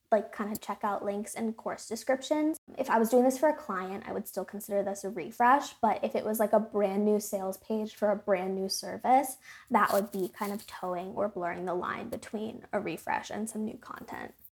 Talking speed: 230 wpm